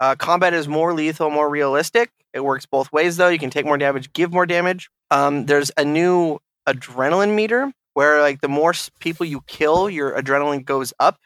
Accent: American